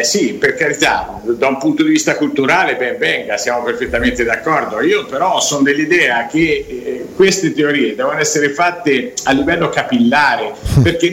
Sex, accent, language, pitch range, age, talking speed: male, native, Italian, 130-185 Hz, 50-69, 155 wpm